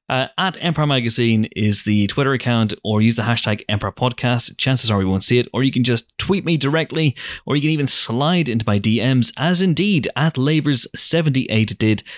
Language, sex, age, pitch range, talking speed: English, male, 30-49, 110-140 Hz, 195 wpm